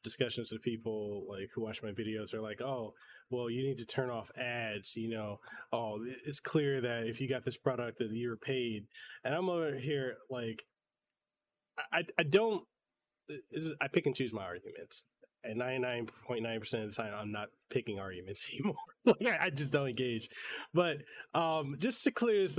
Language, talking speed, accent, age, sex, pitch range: English, 180 wpm, American, 20-39, male, 120-170 Hz